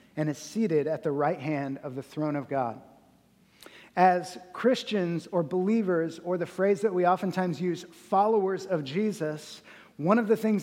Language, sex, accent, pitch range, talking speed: English, male, American, 175-215 Hz, 170 wpm